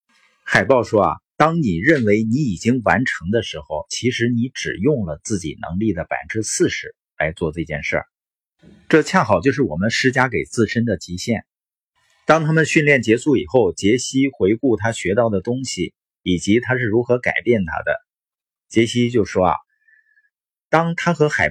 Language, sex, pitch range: Chinese, male, 105-150 Hz